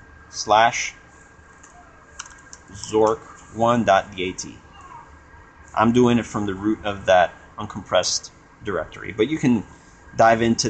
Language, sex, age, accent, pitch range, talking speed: English, male, 30-49, American, 95-125 Hz, 95 wpm